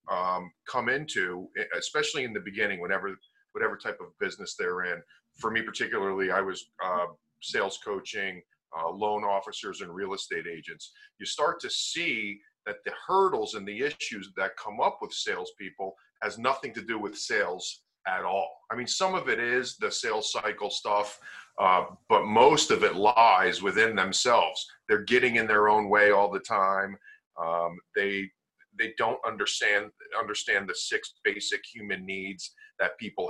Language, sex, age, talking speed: English, male, 40-59, 165 wpm